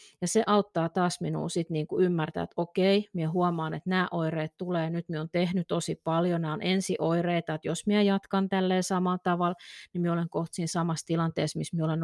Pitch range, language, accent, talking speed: 160-200 Hz, Finnish, native, 210 wpm